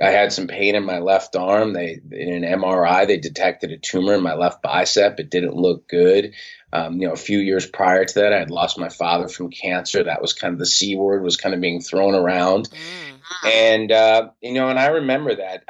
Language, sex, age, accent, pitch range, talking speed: English, male, 30-49, American, 90-115 Hz, 235 wpm